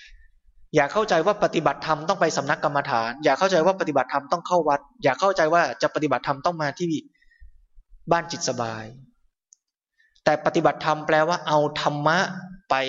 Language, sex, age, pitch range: Thai, male, 20-39, 135-175 Hz